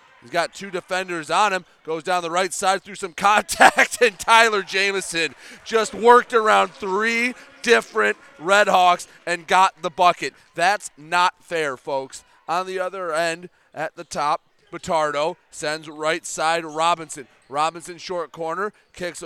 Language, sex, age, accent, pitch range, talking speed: English, male, 30-49, American, 160-205 Hz, 150 wpm